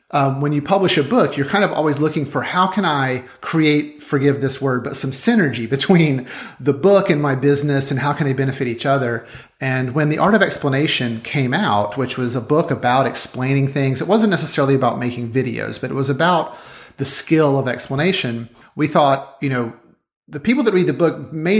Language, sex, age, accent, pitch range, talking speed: English, male, 30-49, American, 125-155 Hz, 210 wpm